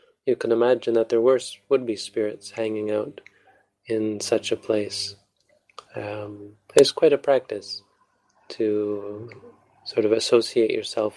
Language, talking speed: English, 130 wpm